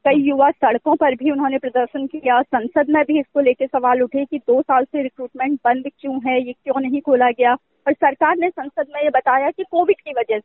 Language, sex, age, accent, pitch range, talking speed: Hindi, female, 20-39, native, 255-335 Hz, 225 wpm